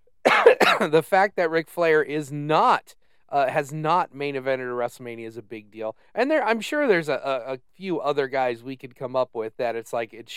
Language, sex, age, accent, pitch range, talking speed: English, male, 30-49, American, 130-185 Hz, 220 wpm